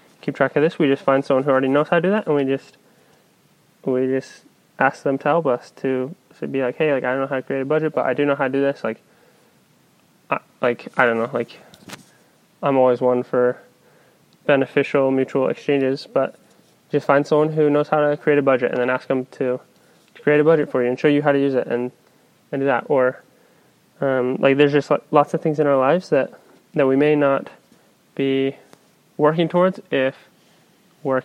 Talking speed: 220 wpm